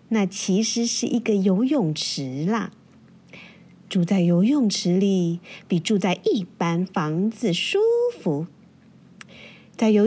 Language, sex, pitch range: Chinese, female, 180-225 Hz